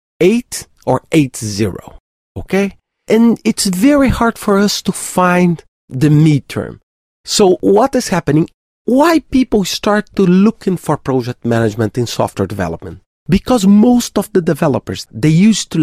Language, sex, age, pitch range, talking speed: English, male, 40-59, 140-215 Hz, 140 wpm